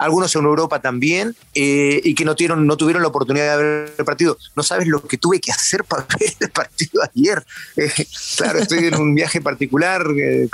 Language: English